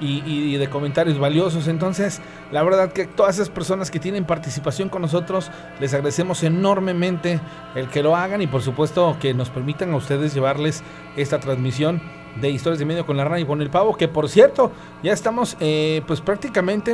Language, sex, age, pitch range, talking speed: Spanish, male, 40-59, 145-175 Hz, 190 wpm